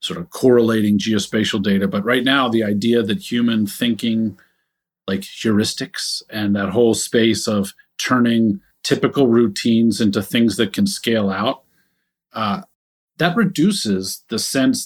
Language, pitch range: English, 110-145 Hz